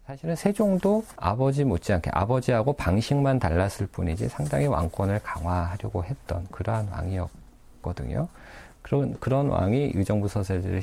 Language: Korean